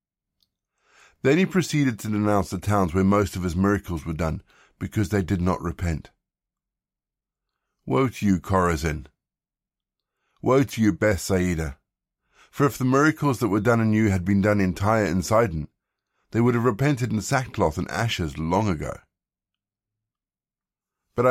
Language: English